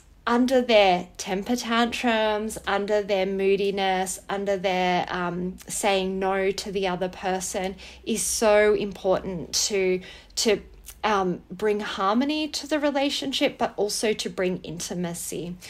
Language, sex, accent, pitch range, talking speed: English, female, Australian, 185-225 Hz, 120 wpm